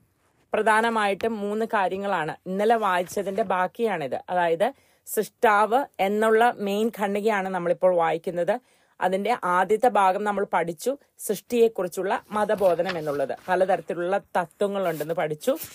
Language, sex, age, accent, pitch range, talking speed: English, female, 30-49, Indian, 180-210 Hz, 130 wpm